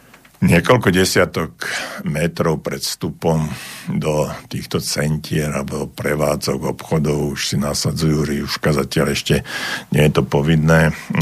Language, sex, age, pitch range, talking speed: Slovak, male, 60-79, 75-80 Hz, 110 wpm